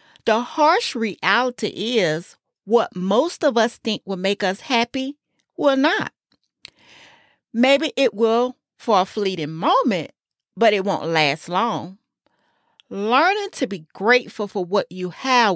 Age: 40-59